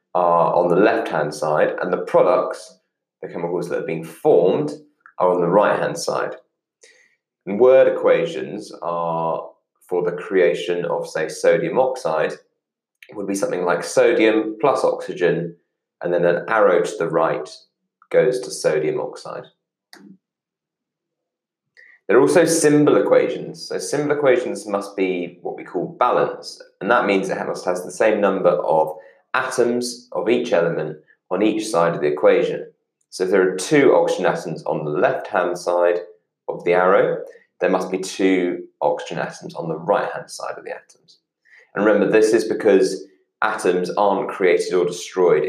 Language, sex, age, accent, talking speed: English, male, 20-39, British, 160 wpm